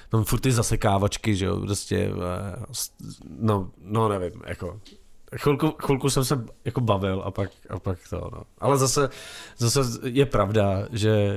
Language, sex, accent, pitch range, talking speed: Czech, male, native, 105-125 Hz, 155 wpm